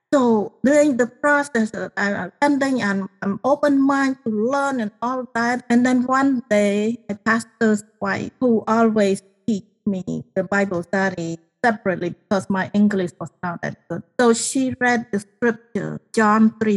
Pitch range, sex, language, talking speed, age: 190-235 Hz, female, English, 155 wpm, 30-49